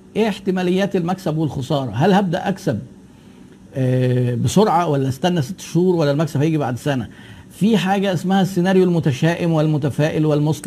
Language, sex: Arabic, male